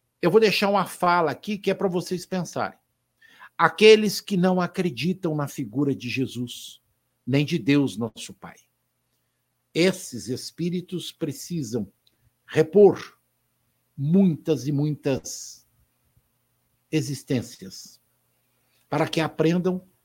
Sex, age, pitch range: male, 60-79, 130-185 Hz